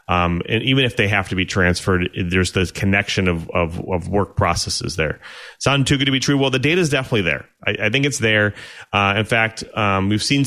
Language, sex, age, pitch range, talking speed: English, male, 30-49, 95-115 Hz, 235 wpm